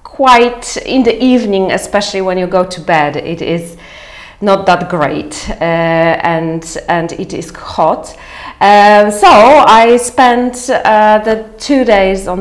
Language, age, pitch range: Polish, 40-59, 165-205 Hz